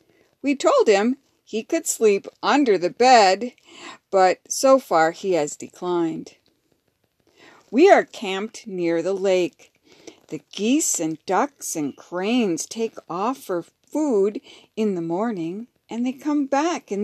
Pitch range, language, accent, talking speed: 190-295 Hz, English, American, 135 wpm